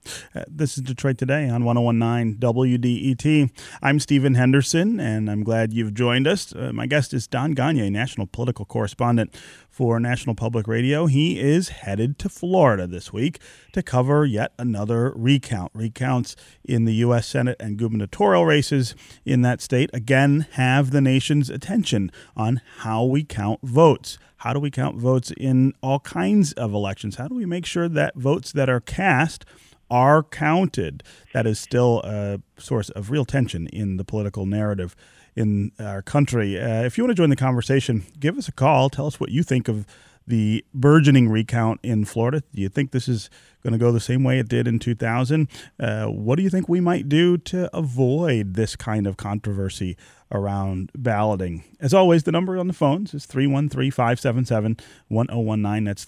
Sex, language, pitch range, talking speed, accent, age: male, English, 110-140 Hz, 175 wpm, American, 30-49